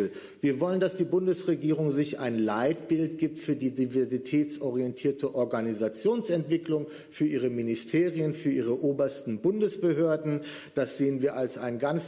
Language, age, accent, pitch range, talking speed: German, 50-69, German, 130-165 Hz, 130 wpm